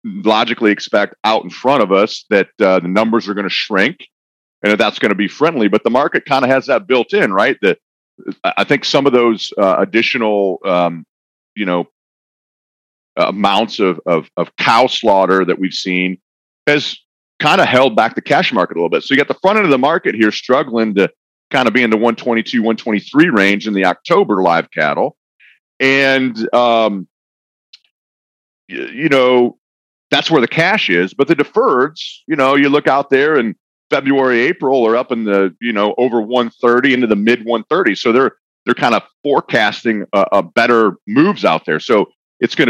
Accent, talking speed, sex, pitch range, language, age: American, 195 wpm, male, 100-135 Hz, English, 40-59